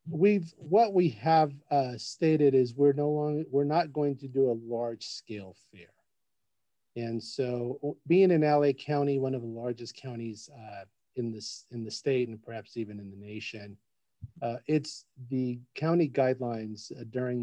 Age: 40-59